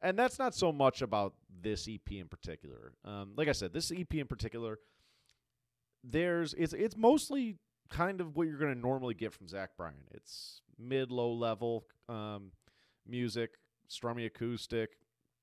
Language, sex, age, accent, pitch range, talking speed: English, male, 30-49, American, 95-120 Hz, 155 wpm